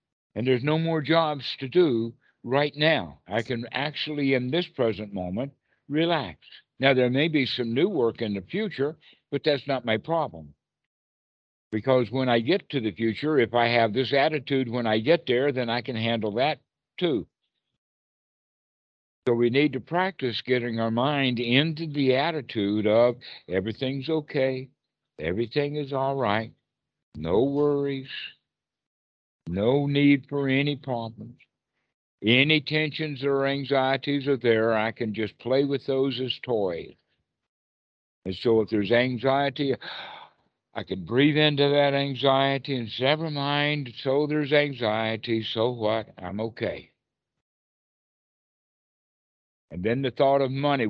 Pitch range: 110-140 Hz